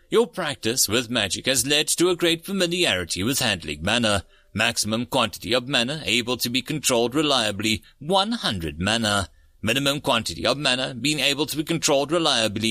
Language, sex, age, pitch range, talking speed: English, male, 30-49, 105-155 Hz, 160 wpm